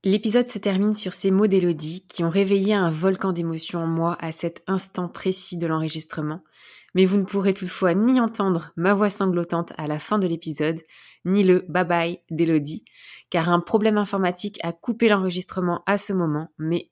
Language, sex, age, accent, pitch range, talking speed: French, female, 20-39, French, 170-200 Hz, 185 wpm